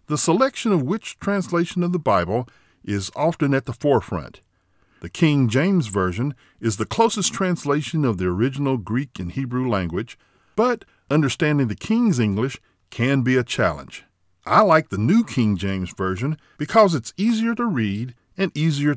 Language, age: English, 50-69